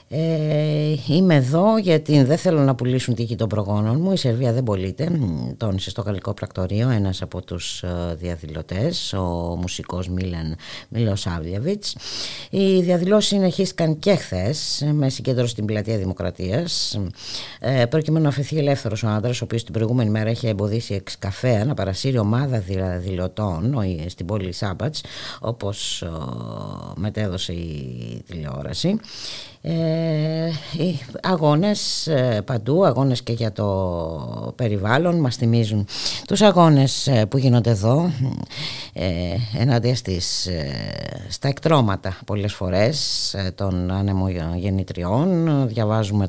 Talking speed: 120 wpm